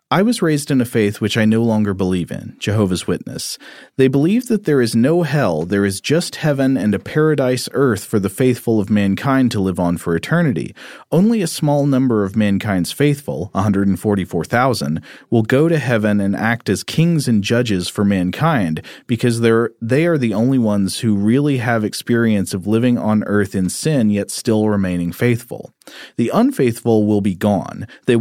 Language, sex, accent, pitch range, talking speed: English, male, American, 100-130 Hz, 185 wpm